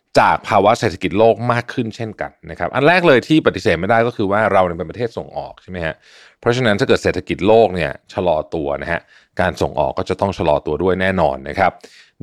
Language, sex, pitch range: Thai, male, 90-120 Hz